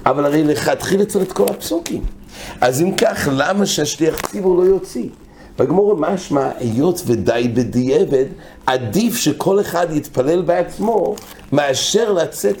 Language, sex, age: English, male, 60-79